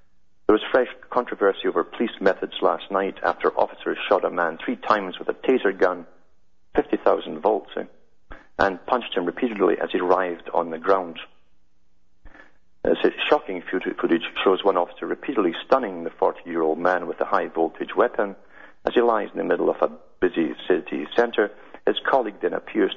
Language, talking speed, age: English, 160 wpm, 40-59